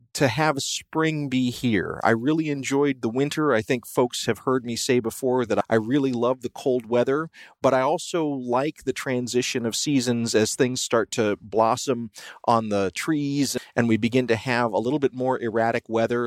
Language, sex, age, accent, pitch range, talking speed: English, male, 30-49, American, 110-135 Hz, 190 wpm